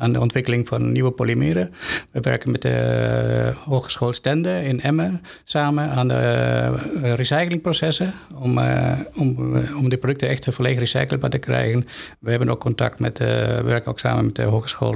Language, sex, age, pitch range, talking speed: Dutch, male, 50-69, 115-140 Hz, 180 wpm